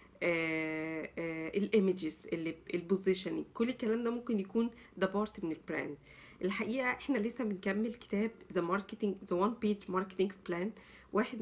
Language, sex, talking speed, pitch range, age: Arabic, female, 120 wpm, 185-235 Hz, 50-69